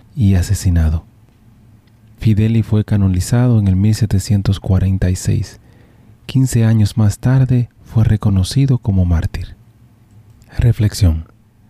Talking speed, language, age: 85 wpm, Spanish, 40-59